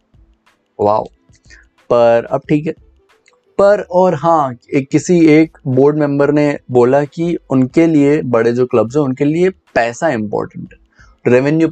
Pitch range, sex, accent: 115-145 Hz, male, native